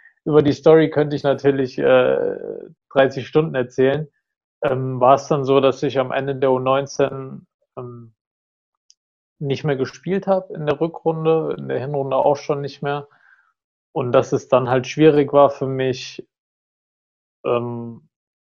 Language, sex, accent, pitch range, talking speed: German, male, German, 130-150 Hz, 150 wpm